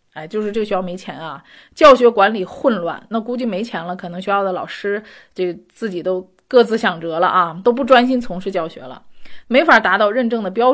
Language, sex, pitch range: Chinese, female, 180-245 Hz